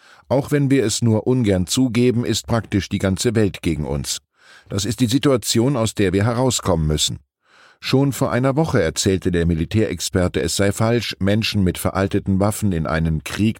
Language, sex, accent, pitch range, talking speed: German, male, German, 90-120 Hz, 175 wpm